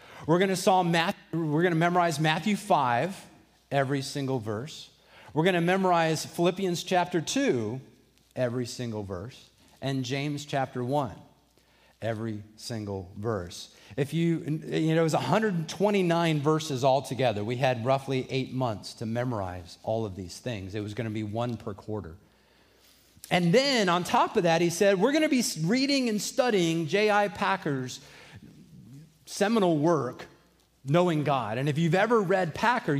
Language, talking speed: English, 160 wpm